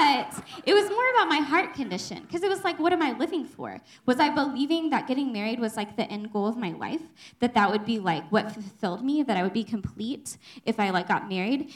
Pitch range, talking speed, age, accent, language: 195-250 Hz, 250 wpm, 10-29, American, English